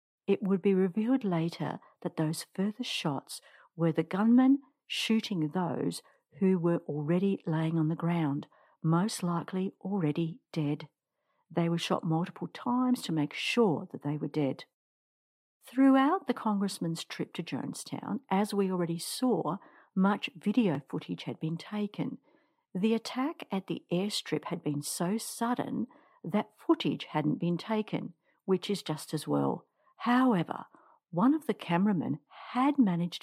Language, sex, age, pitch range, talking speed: English, female, 60-79, 165-235 Hz, 145 wpm